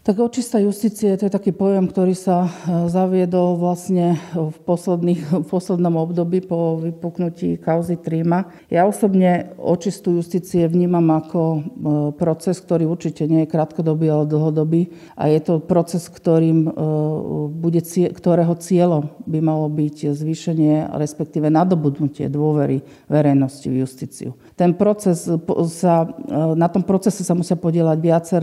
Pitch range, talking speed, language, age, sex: 155-180 Hz, 125 wpm, Slovak, 50-69, female